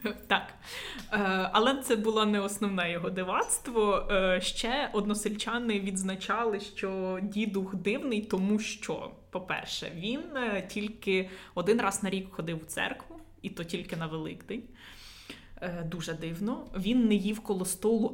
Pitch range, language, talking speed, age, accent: 180-215 Hz, Ukrainian, 125 wpm, 20-39, native